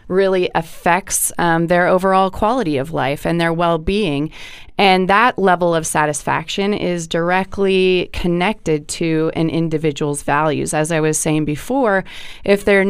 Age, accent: 20-39, American